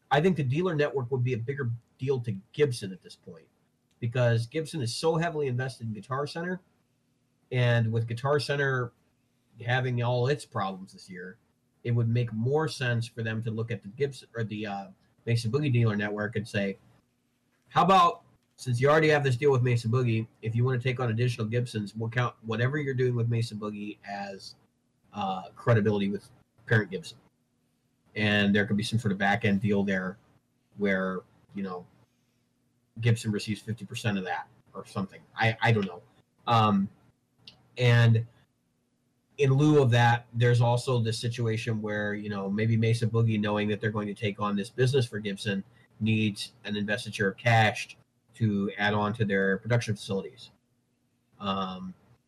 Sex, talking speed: male, 175 wpm